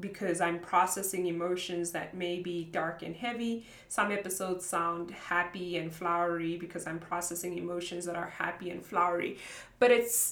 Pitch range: 170-190 Hz